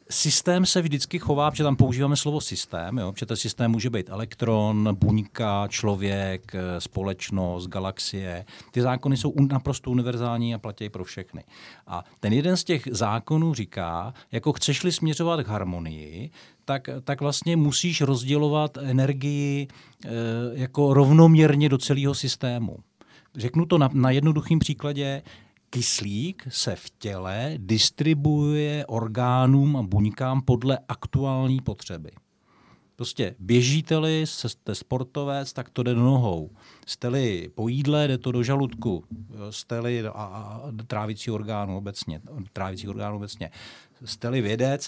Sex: male